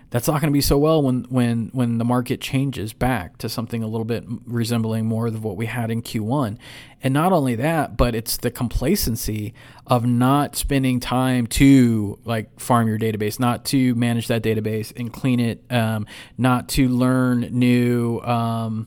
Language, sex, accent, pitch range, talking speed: English, male, American, 115-130 Hz, 185 wpm